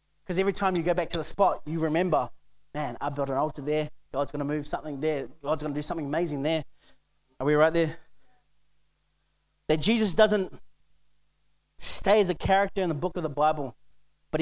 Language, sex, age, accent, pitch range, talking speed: English, male, 20-39, Australian, 160-265 Hz, 190 wpm